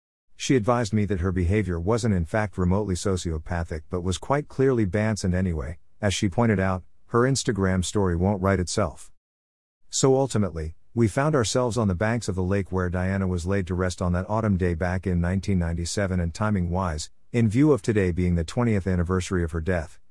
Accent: American